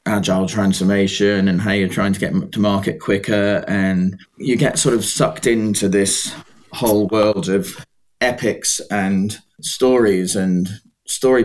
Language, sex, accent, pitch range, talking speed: English, male, British, 95-115 Hz, 140 wpm